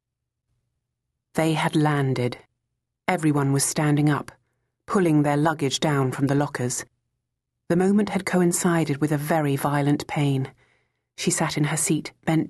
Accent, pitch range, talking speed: British, 130-165 Hz, 140 wpm